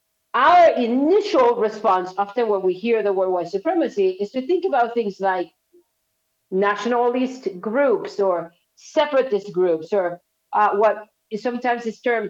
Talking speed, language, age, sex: 140 wpm, English, 50-69, female